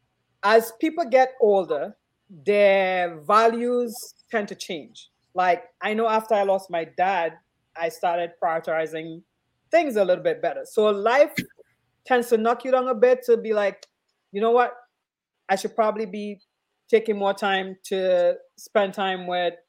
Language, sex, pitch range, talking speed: English, female, 175-235 Hz, 155 wpm